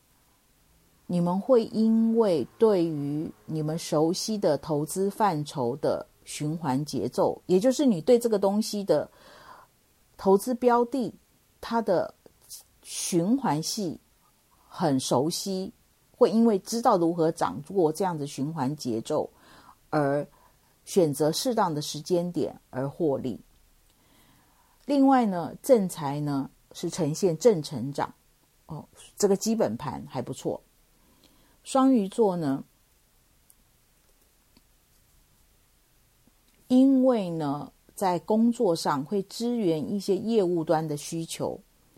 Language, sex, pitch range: Chinese, female, 150-225 Hz